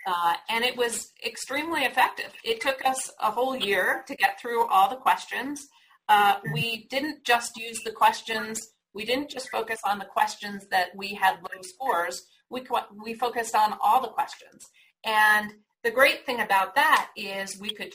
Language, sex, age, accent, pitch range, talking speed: English, female, 40-59, American, 200-255 Hz, 180 wpm